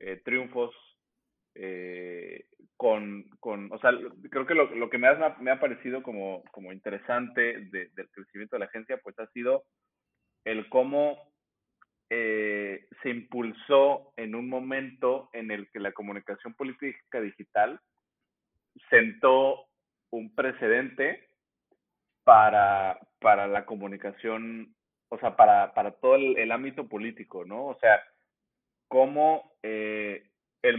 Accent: Mexican